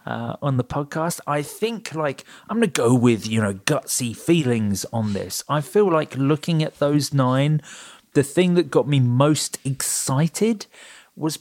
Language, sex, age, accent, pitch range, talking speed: English, male, 30-49, British, 110-145 Hz, 170 wpm